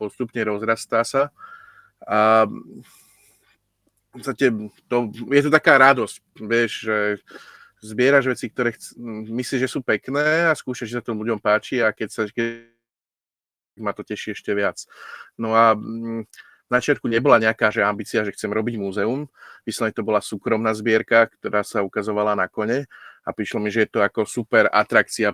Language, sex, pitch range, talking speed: Slovak, male, 105-125 Hz, 160 wpm